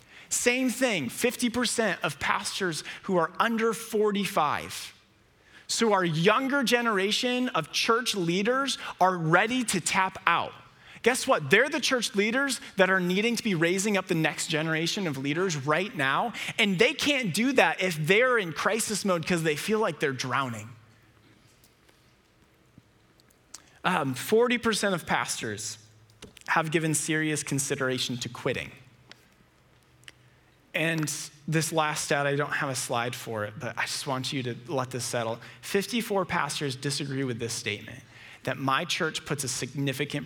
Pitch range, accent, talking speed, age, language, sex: 125-190 Hz, American, 150 wpm, 30-49, English, male